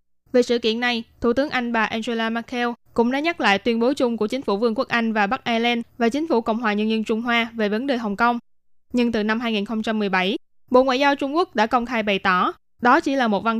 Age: 10-29